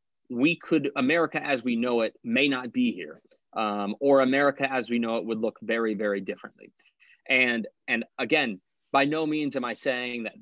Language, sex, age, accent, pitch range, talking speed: English, male, 30-49, American, 115-145 Hz, 190 wpm